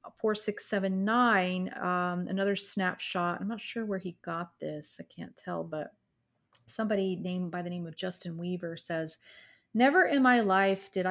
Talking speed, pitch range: 175 wpm, 175-205 Hz